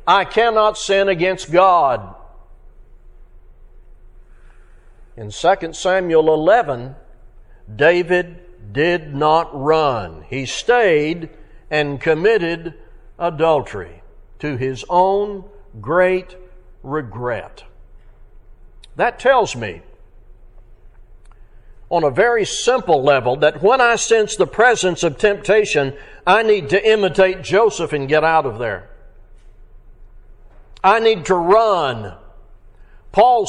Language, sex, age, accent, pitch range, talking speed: English, male, 60-79, American, 120-195 Hz, 95 wpm